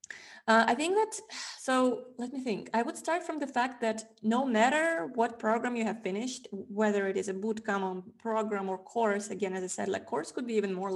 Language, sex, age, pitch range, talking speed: English, female, 20-39, 190-235 Hz, 220 wpm